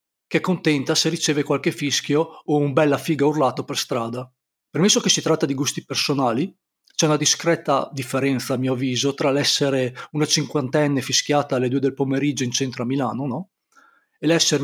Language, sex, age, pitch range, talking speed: Italian, male, 40-59, 135-165 Hz, 180 wpm